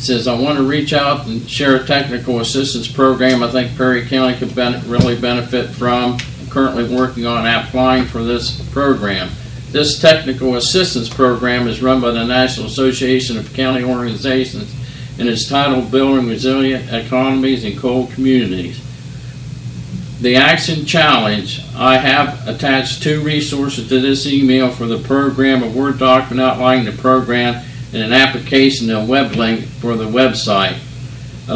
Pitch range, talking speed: 125-135 Hz, 155 wpm